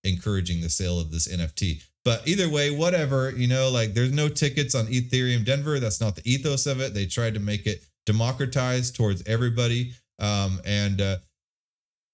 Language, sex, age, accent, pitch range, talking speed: English, male, 30-49, American, 85-120 Hz, 180 wpm